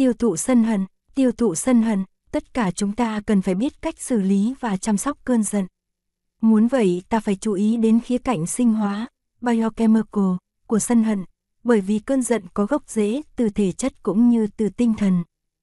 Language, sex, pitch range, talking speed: Vietnamese, female, 205-240 Hz, 205 wpm